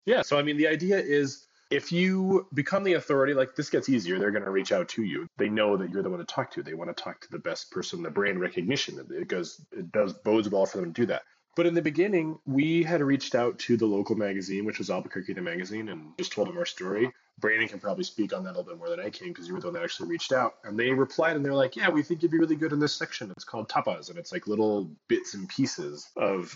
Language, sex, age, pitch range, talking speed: English, male, 30-49, 115-170 Hz, 280 wpm